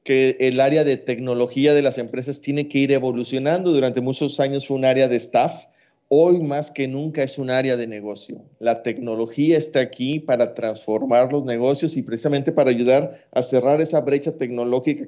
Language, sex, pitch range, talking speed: Spanish, male, 120-145 Hz, 185 wpm